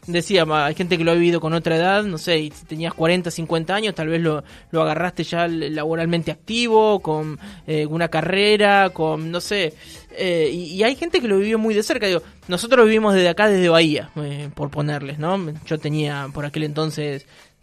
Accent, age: Argentinian, 20-39